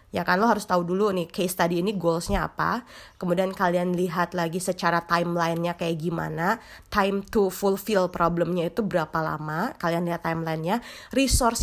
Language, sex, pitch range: Indonesian, female, 170-210 Hz